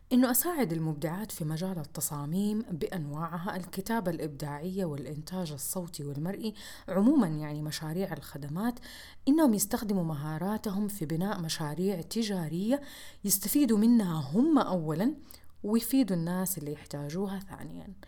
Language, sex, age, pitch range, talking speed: Arabic, female, 30-49, 160-225 Hz, 105 wpm